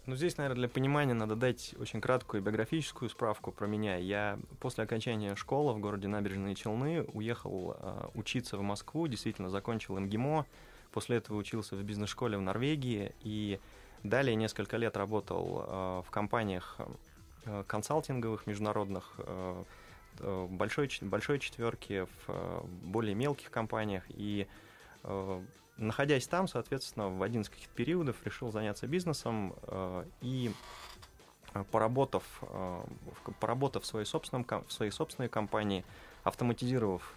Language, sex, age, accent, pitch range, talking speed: Russian, male, 20-39, native, 100-125 Hz, 130 wpm